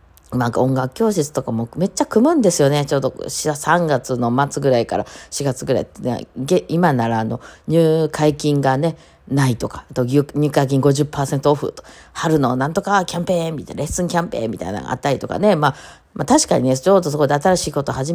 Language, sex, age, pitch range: Japanese, female, 40-59, 115-150 Hz